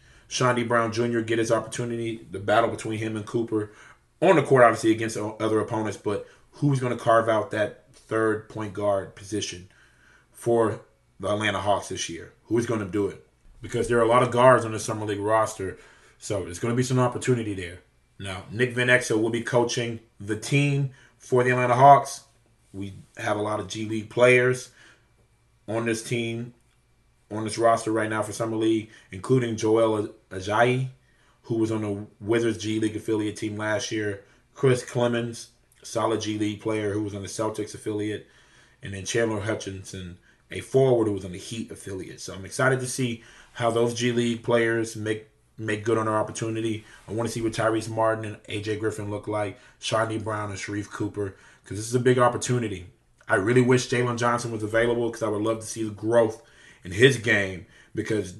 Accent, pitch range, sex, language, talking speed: American, 105-120 Hz, male, English, 195 wpm